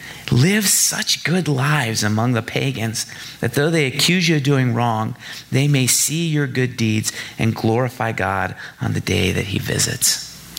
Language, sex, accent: English, male, American